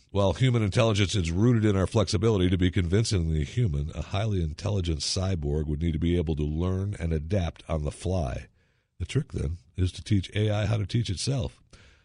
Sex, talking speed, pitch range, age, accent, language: male, 195 wpm, 90-110 Hz, 50-69, American, English